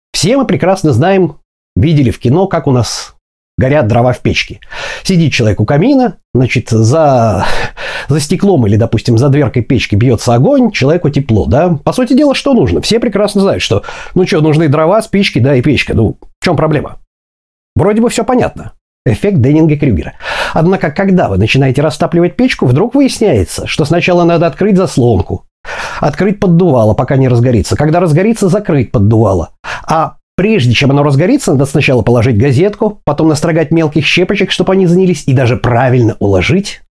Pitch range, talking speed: 125-190 Hz, 165 wpm